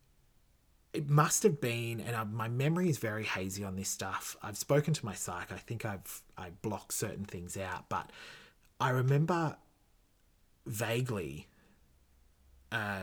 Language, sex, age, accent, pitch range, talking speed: English, male, 30-49, Australian, 95-135 Hz, 145 wpm